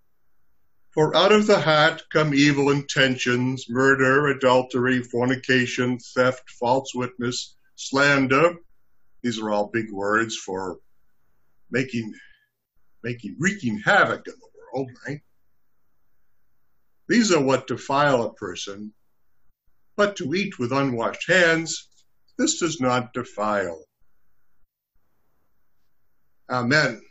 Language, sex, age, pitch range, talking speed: English, male, 60-79, 115-145 Hz, 100 wpm